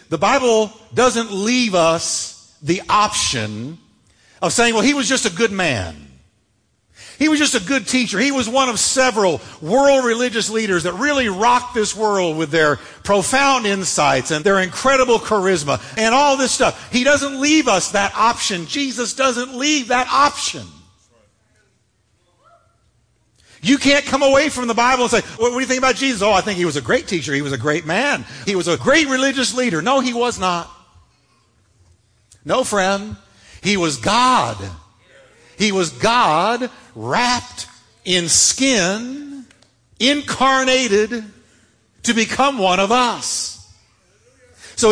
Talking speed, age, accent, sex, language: 150 wpm, 50-69, American, male, English